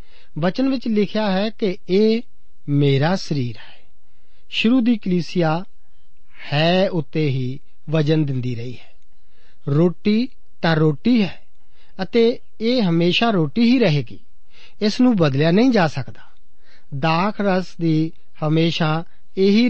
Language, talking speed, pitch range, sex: Punjabi, 120 wpm, 145-210 Hz, male